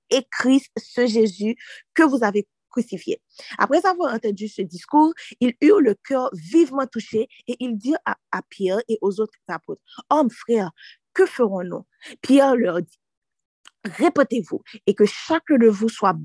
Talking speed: 160 wpm